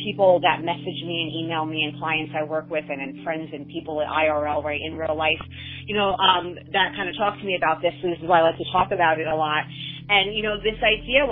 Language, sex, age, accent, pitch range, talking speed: English, female, 30-49, American, 155-185 Hz, 270 wpm